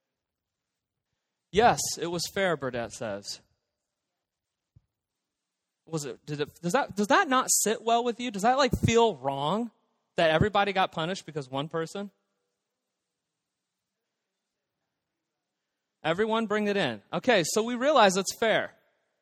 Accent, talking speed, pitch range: American, 130 wpm, 160-220 Hz